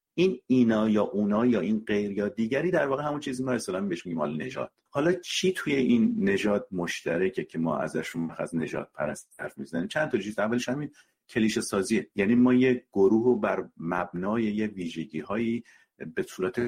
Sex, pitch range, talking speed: male, 90-125 Hz, 185 wpm